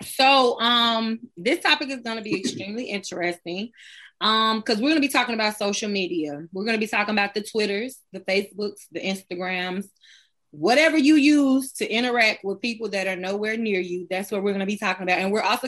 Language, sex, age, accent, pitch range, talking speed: English, female, 20-39, American, 190-255 Hz, 210 wpm